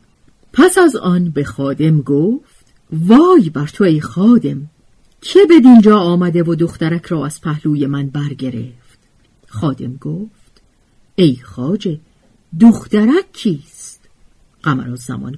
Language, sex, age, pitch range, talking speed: Persian, female, 50-69, 145-225 Hz, 115 wpm